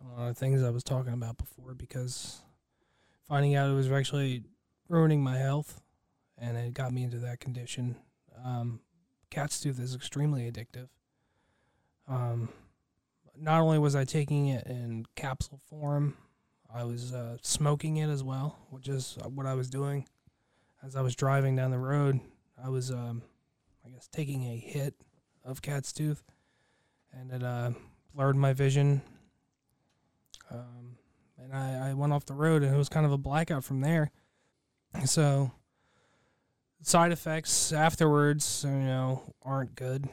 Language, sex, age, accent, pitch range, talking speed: English, male, 20-39, American, 125-145 Hz, 150 wpm